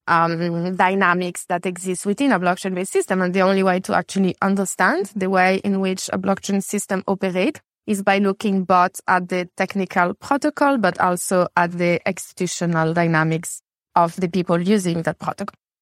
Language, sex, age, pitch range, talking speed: English, female, 20-39, 175-200 Hz, 165 wpm